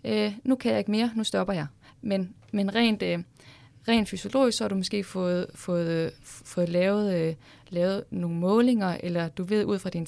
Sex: female